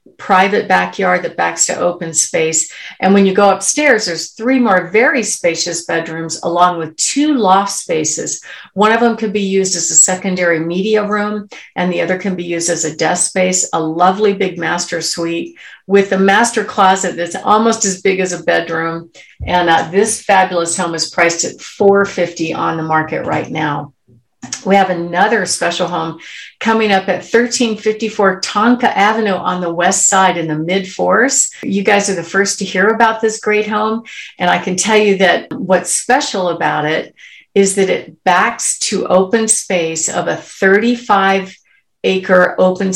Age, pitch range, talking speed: 50-69, 170-205 Hz, 175 wpm